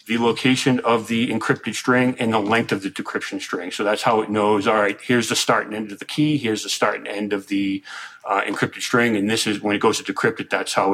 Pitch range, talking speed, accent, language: 110-130 Hz, 270 wpm, American, English